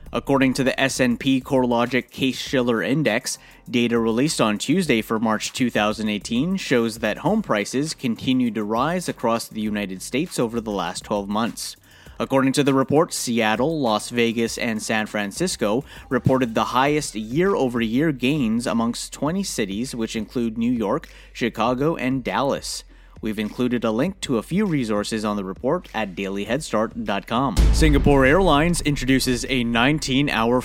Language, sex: English, male